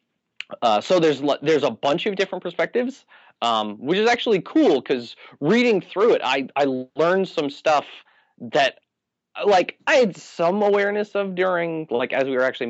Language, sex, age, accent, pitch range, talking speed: English, male, 30-49, American, 110-155 Hz, 170 wpm